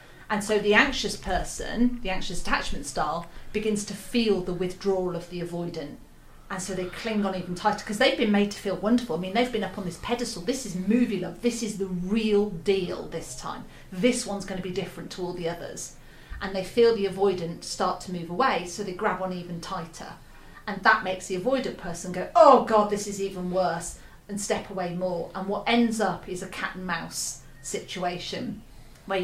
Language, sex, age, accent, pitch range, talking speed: English, female, 40-59, British, 175-205 Hz, 210 wpm